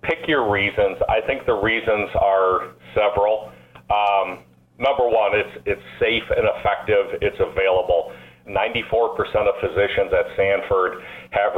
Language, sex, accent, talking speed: English, male, American, 135 wpm